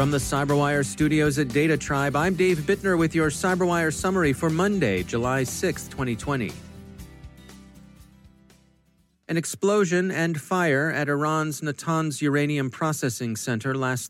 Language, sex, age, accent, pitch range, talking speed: English, male, 40-59, American, 120-155 Hz, 125 wpm